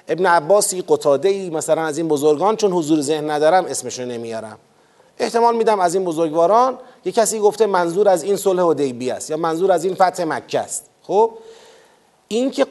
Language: Persian